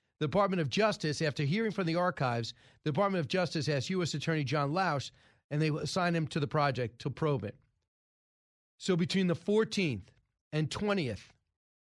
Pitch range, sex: 140-200 Hz, male